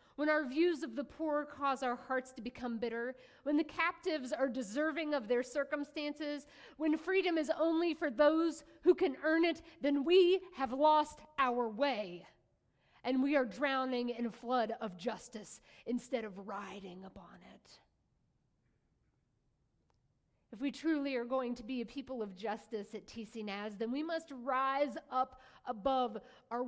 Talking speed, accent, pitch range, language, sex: 160 wpm, American, 205-285 Hz, English, female